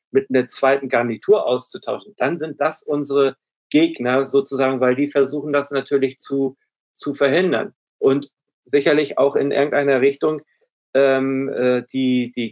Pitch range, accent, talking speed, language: 125-145 Hz, German, 135 wpm, German